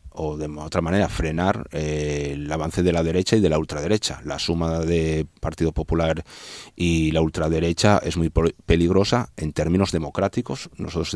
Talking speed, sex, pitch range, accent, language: 160 wpm, male, 80-90 Hz, Spanish, Spanish